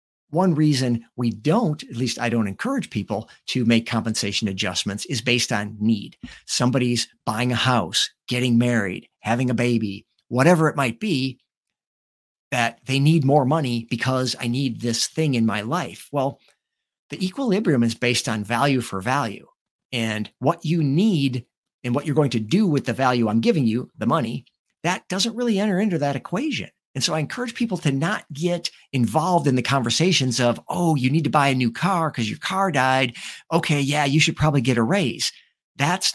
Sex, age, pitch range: male, 50-69, 115-155 Hz